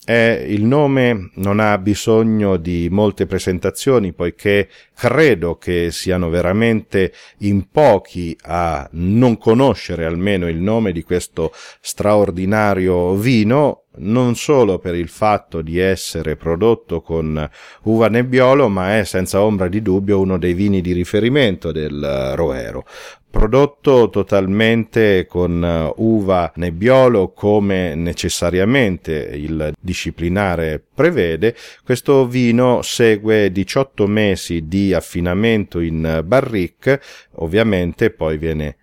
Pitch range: 85-115 Hz